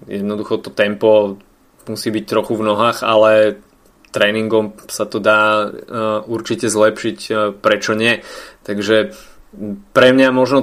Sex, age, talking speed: male, 20-39, 130 wpm